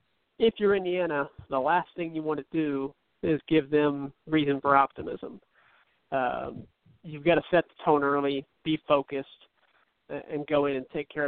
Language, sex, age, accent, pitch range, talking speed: English, male, 50-69, American, 145-175 Hz, 170 wpm